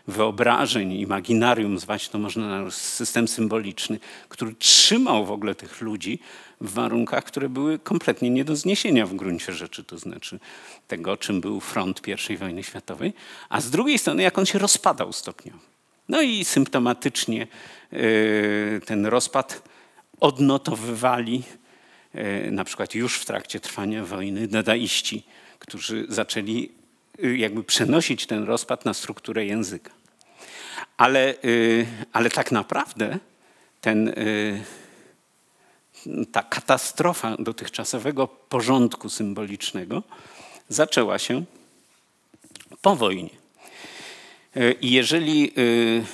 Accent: native